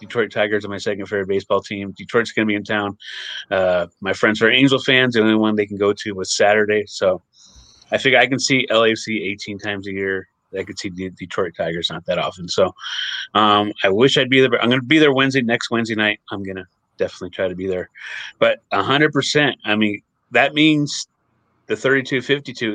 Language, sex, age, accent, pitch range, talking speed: English, male, 30-49, American, 100-125 Hz, 215 wpm